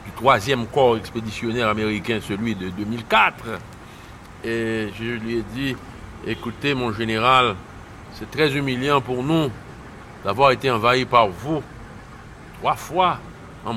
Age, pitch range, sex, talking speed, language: 60-79, 115-165 Hz, male, 120 wpm, French